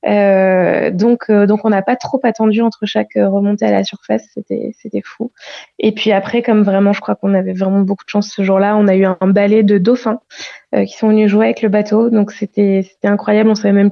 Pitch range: 200-230 Hz